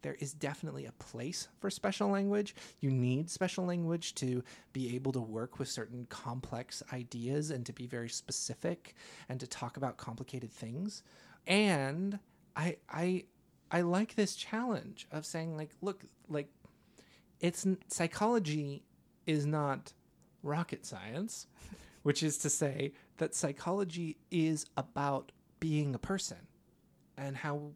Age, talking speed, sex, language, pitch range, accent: 30-49, 135 wpm, male, English, 130-170 Hz, American